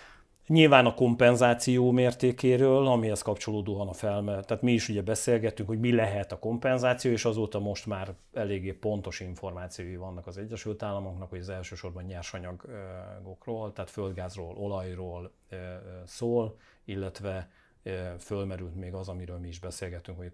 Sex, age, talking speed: male, 40-59, 135 wpm